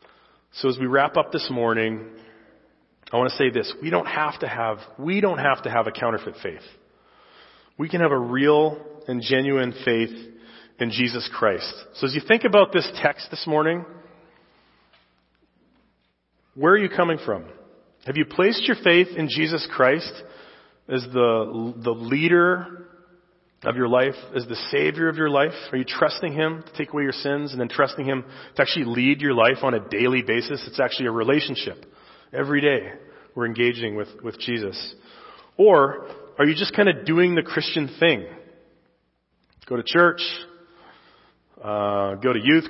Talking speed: 170 wpm